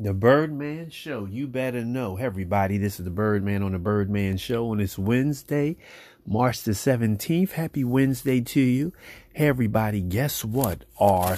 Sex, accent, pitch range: male, American, 105-140 Hz